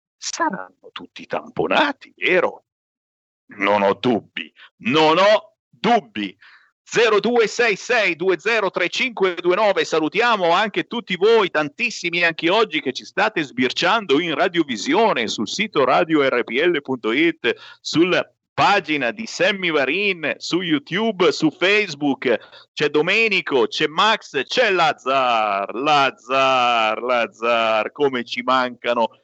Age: 50-69